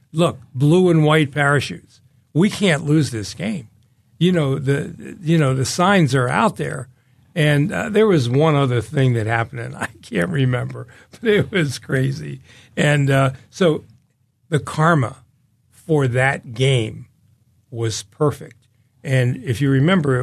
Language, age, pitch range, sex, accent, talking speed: English, 60-79, 115-140 Hz, male, American, 150 wpm